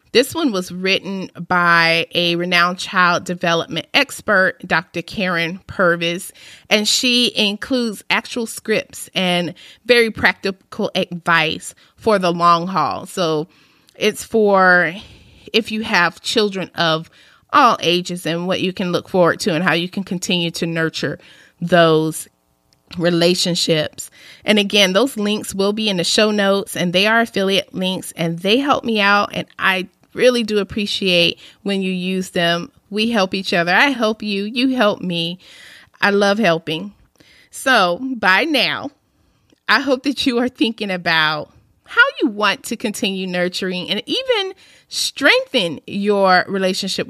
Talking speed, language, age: 145 wpm, English, 30-49